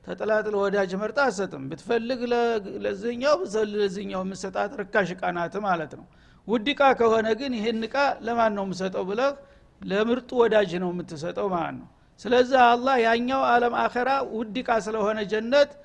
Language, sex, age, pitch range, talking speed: Amharic, male, 60-79, 200-250 Hz, 125 wpm